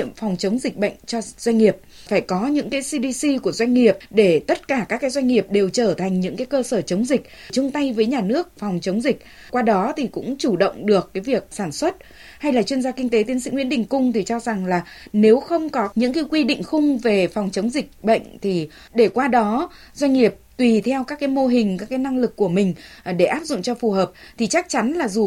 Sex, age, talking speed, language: female, 20-39, 255 wpm, Vietnamese